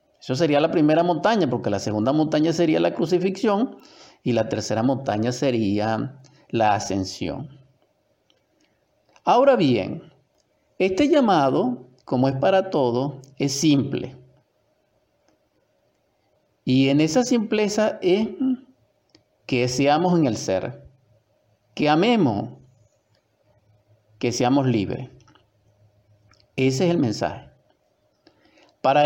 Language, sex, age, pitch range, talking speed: Spanish, male, 50-69, 120-175 Hz, 100 wpm